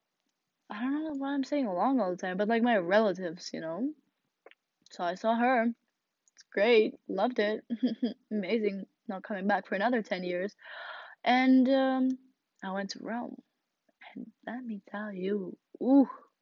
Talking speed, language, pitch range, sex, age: 160 wpm, English, 195-260 Hz, female, 20-39